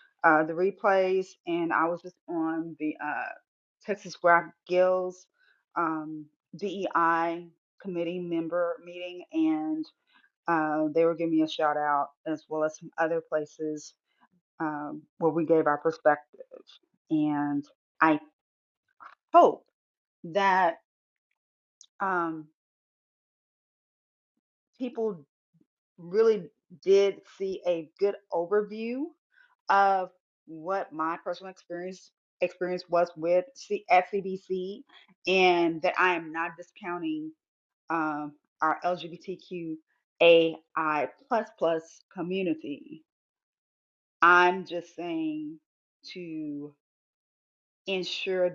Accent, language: American, English